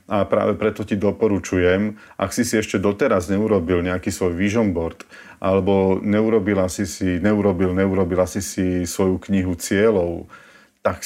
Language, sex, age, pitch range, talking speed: Slovak, male, 40-59, 90-105 Hz, 145 wpm